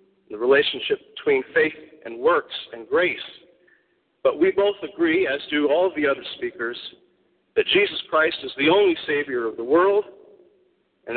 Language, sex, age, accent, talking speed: English, male, 40-59, American, 160 wpm